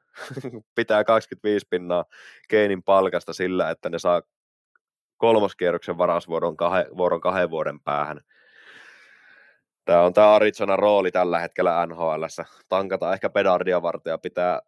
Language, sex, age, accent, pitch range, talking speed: Finnish, male, 20-39, native, 85-110 Hz, 115 wpm